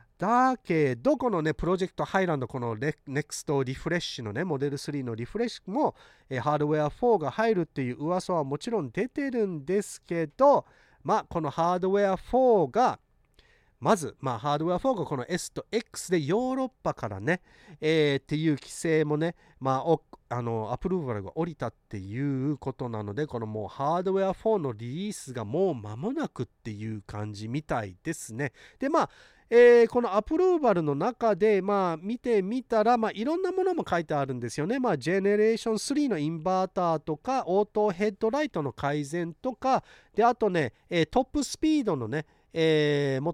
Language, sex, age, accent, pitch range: Japanese, male, 40-59, native, 140-220 Hz